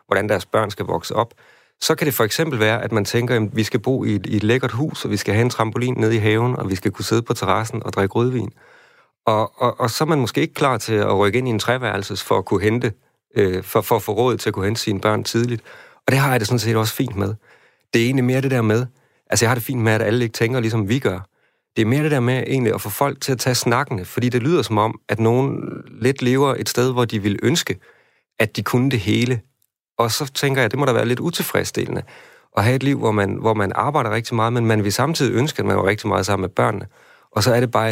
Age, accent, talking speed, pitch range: 40-59, native, 285 wpm, 105-125 Hz